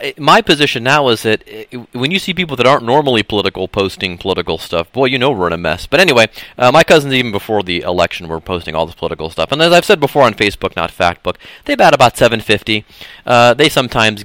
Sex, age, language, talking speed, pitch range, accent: male, 30-49, English, 225 wpm, 90-120 Hz, American